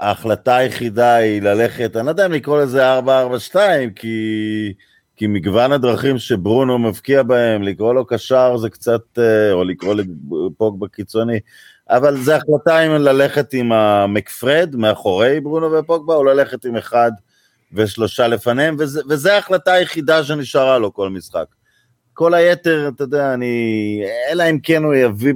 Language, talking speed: Hebrew, 140 wpm